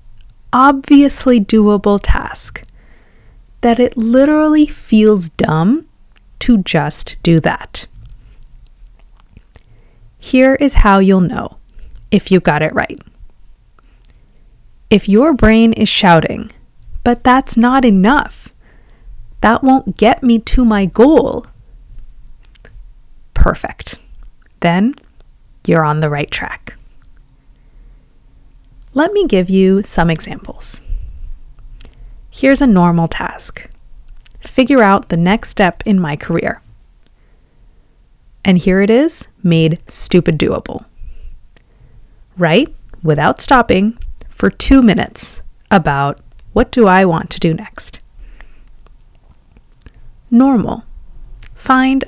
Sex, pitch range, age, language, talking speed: female, 150-240 Hz, 30-49, English, 100 wpm